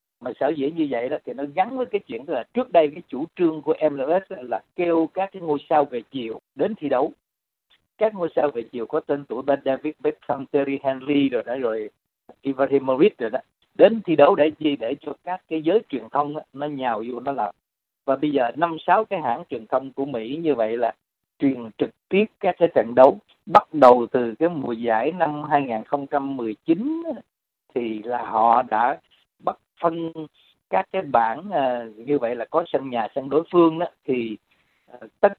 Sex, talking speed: male, 200 wpm